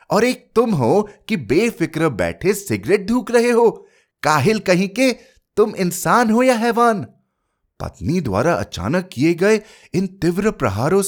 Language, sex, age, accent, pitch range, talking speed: Hindi, male, 30-49, native, 135-200 Hz, 145 wpm